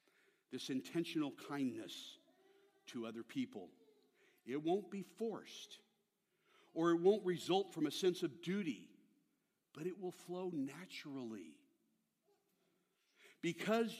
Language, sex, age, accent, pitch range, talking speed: English, male, 60-79, American, 160-230 Hz, 105 wpm